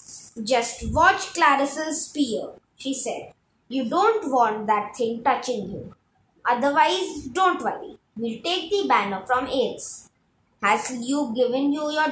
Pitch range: 220-320 Hz